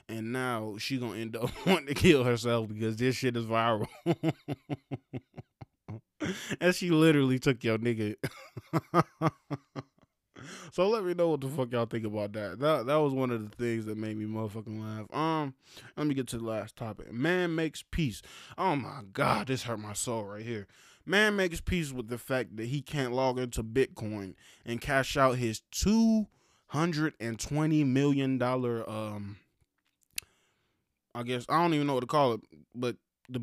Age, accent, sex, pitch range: 20-39, American, male, 115-145 Hz